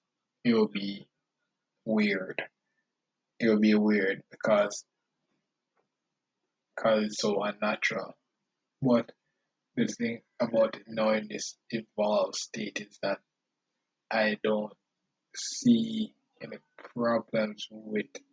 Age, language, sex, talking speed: 20-39, English, male, 95 wpm